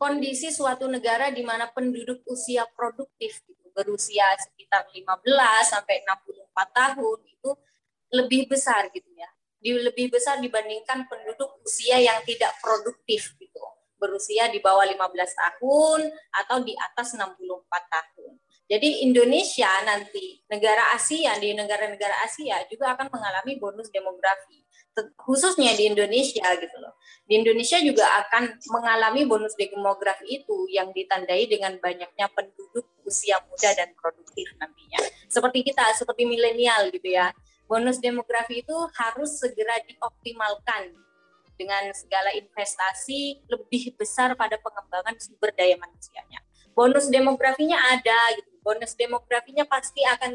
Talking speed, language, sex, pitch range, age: 125 wpm, Indonesian, female, 200-260 Hz, 20-39